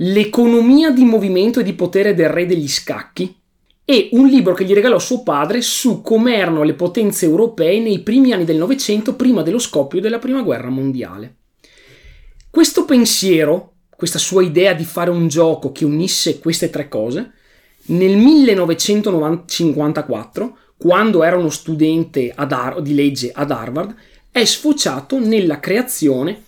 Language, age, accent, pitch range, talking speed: Italian, 30-49, native, 155-235 Hz, 145 wpm